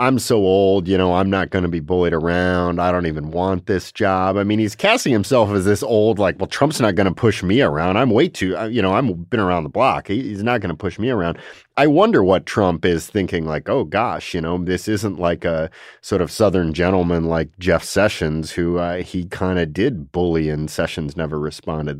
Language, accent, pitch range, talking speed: English, American, 80-100 Hz, 240 wpm